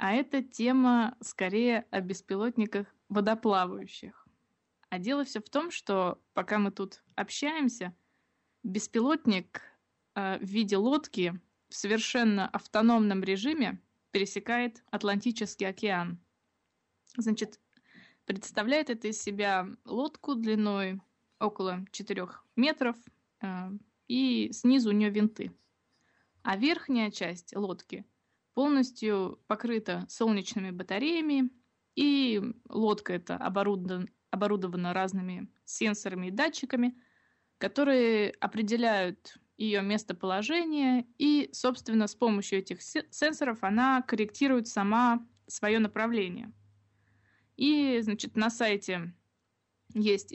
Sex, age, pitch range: female, 20-39, 195-245 Hz